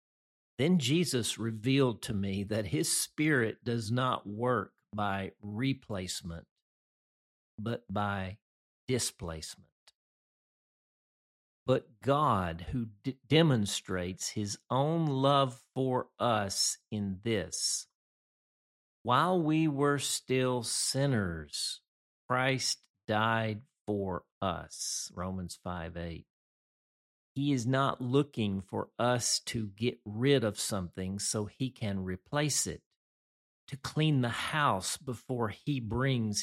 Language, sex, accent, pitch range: English, male, American, 95-135 Hz